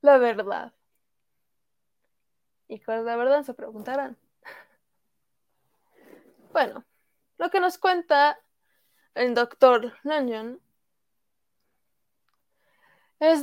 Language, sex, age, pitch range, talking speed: Spanish, female, 20-39, 240-320 Hz, 80 wpm